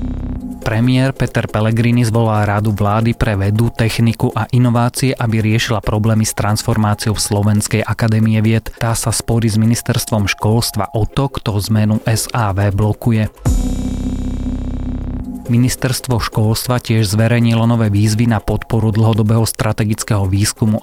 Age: 30-49